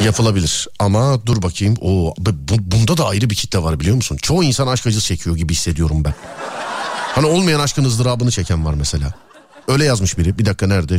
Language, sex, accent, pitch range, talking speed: Turkish, male, native, 95-150 Hz, 185 wpm